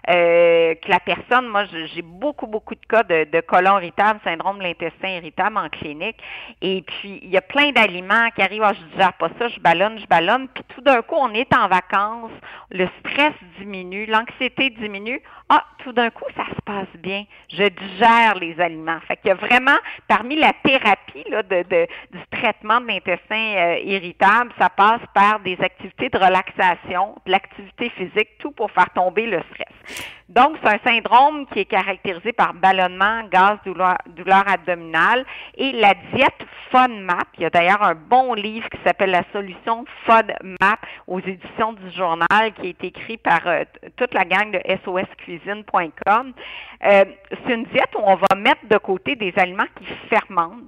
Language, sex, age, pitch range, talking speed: French, female, 50-69, 185-230 Hz, 180 wpm